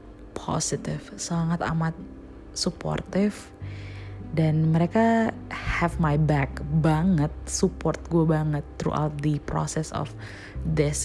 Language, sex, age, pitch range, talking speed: Indonesian, female, 20-39, 125-170 Hz, 100 wpm